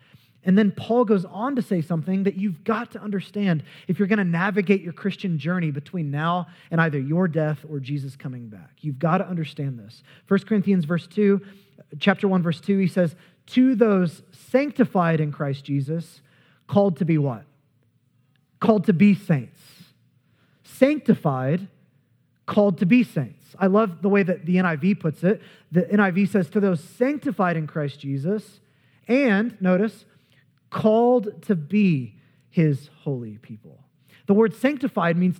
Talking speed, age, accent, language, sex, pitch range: 160 wpm, 20-39, American, English, male, 140-200 Hz